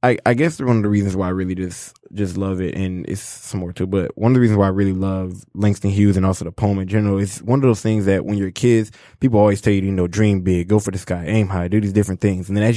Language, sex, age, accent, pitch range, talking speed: English, male, 20-39, American, 95-110 Hz, 310 wpm